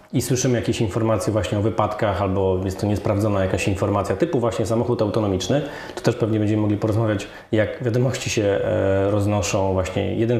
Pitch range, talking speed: 105-125 Hz, 165 wpm